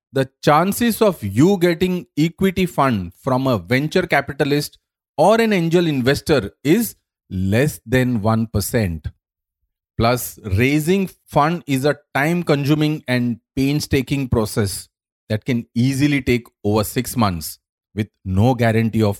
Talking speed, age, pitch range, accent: 125 wpm, 40-59, 100-150 Hz, Indian